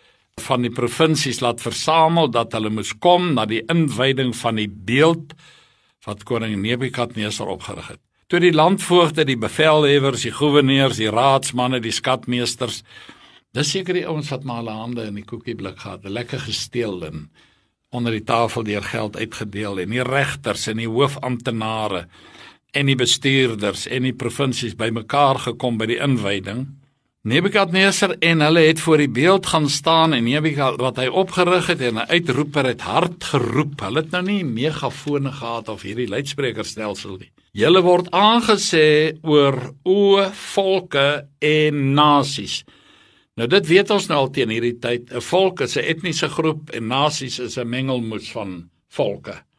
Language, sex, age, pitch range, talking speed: English, male, 60-79, 115-155 Hz, 155 wpm